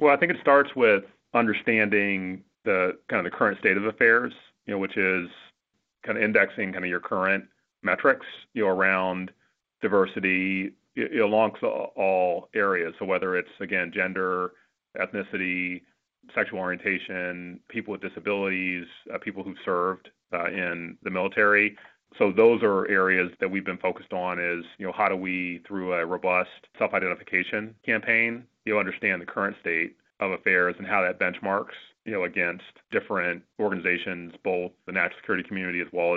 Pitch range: 90-105 Hz